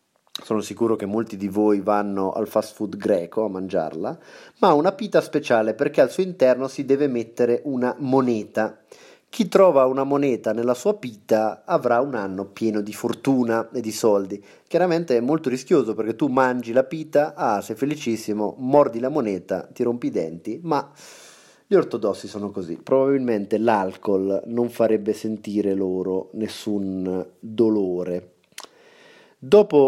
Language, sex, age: Italian, male, 30-49